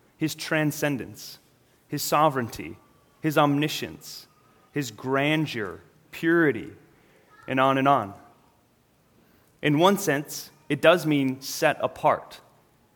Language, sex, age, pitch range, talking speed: English, male, 30-49, 130-160 Hz, 95 wpm